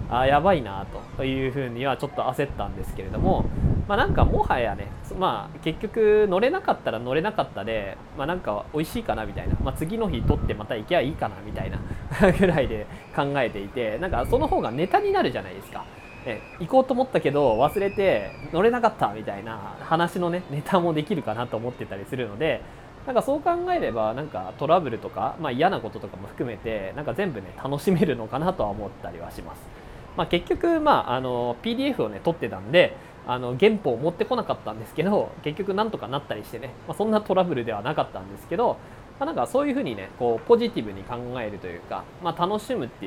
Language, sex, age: Japanese, male, 20-39